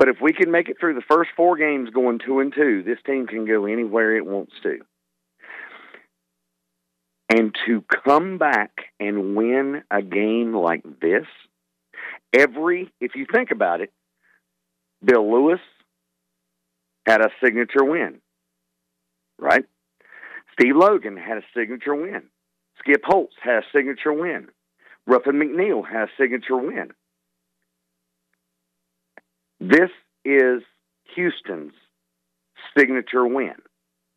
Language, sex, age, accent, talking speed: English, male, 50-69, American, 120 wpm